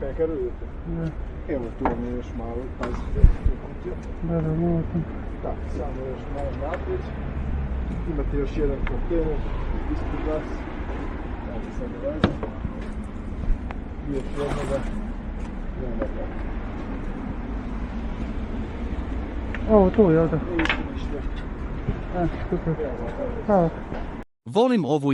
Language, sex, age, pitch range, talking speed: Croatian, male, 50-69, 90-145 Hz, 55 wpm